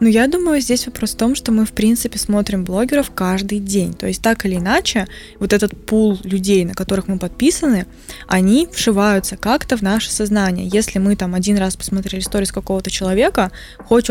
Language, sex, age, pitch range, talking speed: Russian, female, 20-39, 190-225 Hz, 190 wpm